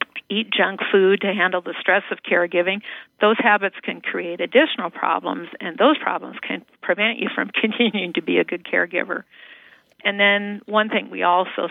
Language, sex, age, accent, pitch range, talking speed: English, female, 50-69, American, 175-215 Hz, 175 wpm